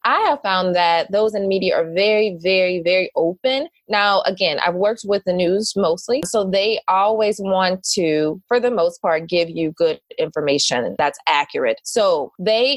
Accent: American